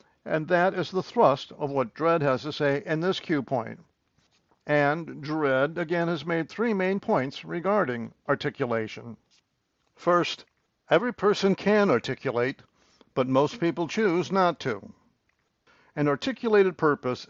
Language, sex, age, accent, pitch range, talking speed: English, male, 60-79, American, 135-175 Hz, 135 wpm